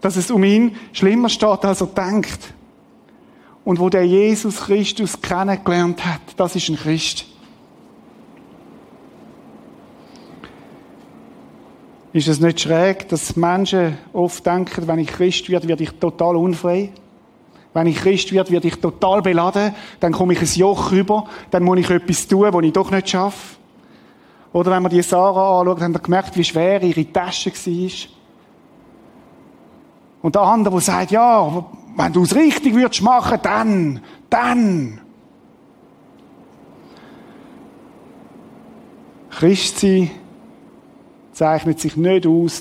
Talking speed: 130 wpm